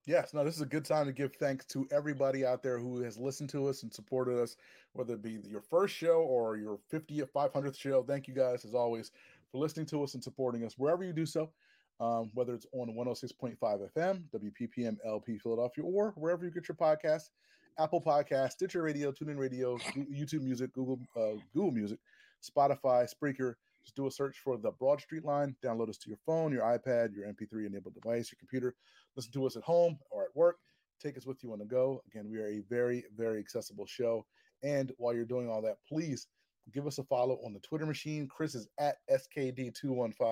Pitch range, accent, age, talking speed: 115-145 Hz, American, 30-49, 210 wpm